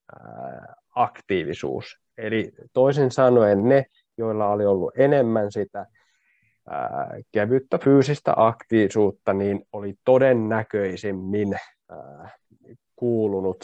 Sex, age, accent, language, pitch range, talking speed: male, 20-39, native, Finnish, 100-135 Hz, 75 wpm